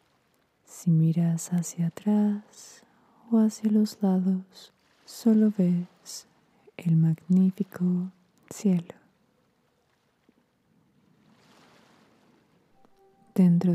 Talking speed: 60 wpm